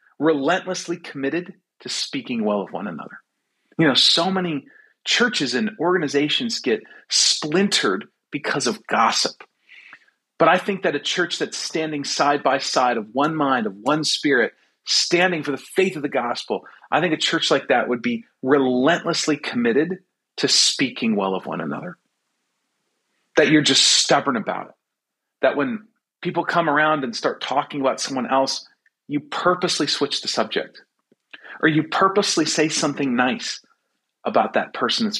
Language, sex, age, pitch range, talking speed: English, male, 40-59, 145-200 Hz, 155 wpm